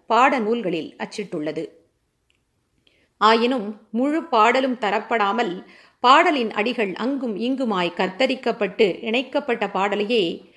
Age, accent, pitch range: 50-69, native, 210-265 Hz